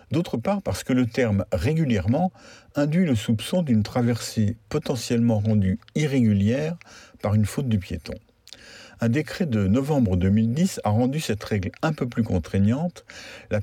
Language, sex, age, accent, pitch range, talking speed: French, male, 50-69, French, 105-140 Hz, 150 wpm